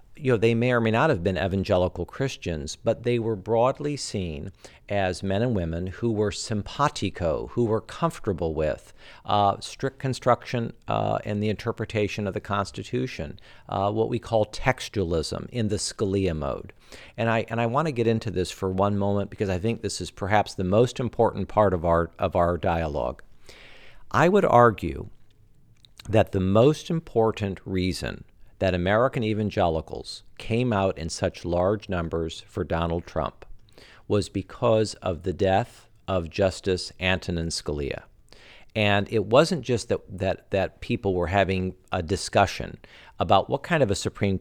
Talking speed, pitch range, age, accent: 160 wpm, 95-115 Hz, 50-69, American